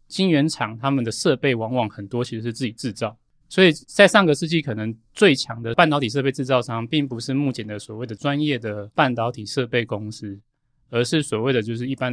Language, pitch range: Chinese, 115-145 Hz